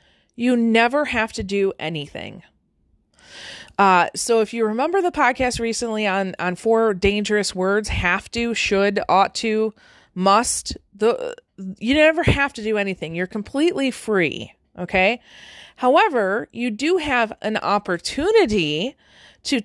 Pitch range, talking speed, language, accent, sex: 190-250 Hz, 130 wpm, English, American, female